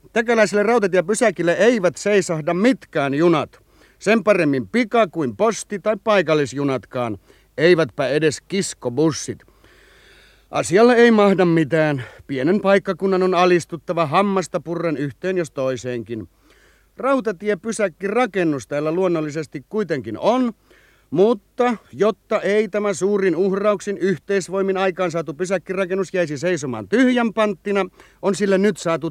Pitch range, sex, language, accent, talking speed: 155-205 Hz, male, Finnish, native, 105 wpm